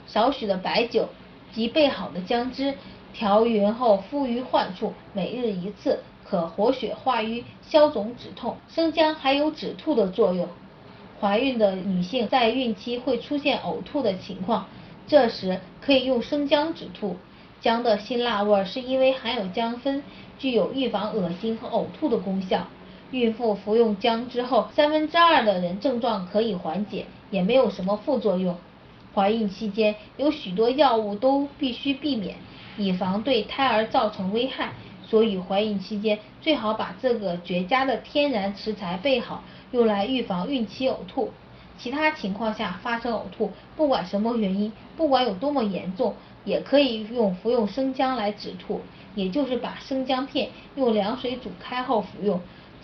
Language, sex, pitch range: Chinese, female, 205-260 Hz